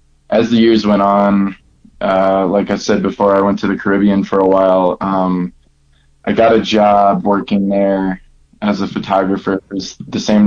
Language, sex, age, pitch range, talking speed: English, male, 20-39, 95-100 Hz, 185 wpm